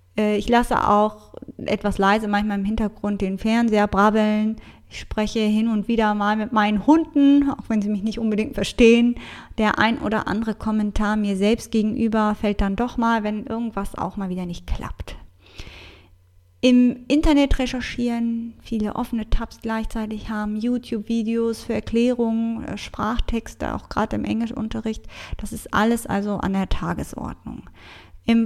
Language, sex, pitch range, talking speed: German, female, 210-240 Hz, 150 wpm